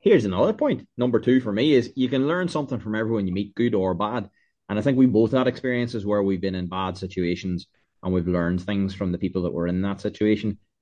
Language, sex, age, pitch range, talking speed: English, male, 20-39, 95-120 Hz, 245 wpm